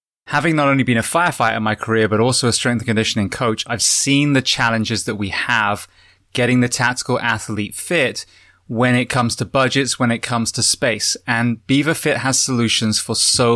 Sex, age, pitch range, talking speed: male, 20-39, 110-135 Hz, 200 wpm